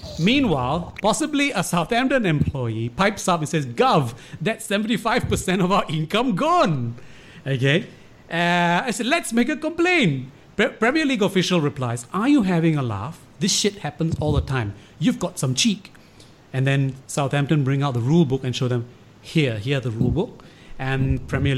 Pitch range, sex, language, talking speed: 125-175 Hz, male, English, 170 wpm